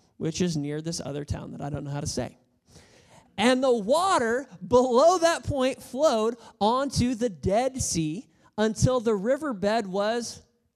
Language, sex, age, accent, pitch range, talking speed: English, male, 20-39, American, 180-255 Hz, 155 wpm